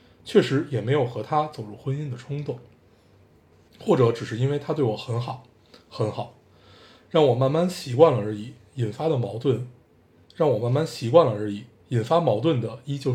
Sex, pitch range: male, 115-145 Hz